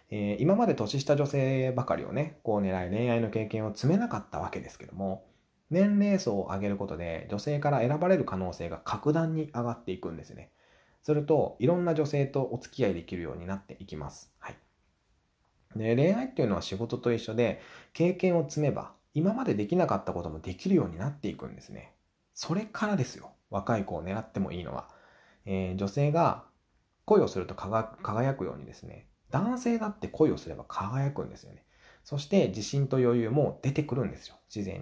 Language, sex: Japanese, male